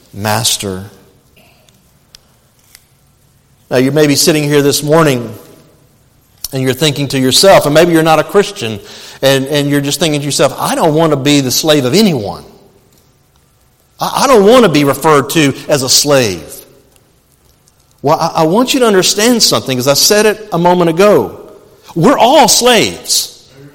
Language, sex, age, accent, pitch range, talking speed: English, male, 50-69, American, 150-235 Hz, 165 wpm